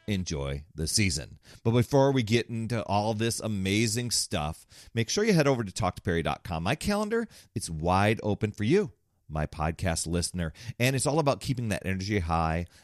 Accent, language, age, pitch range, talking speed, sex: American, English, 40-59, 90-130 Hz, 175 wpm, male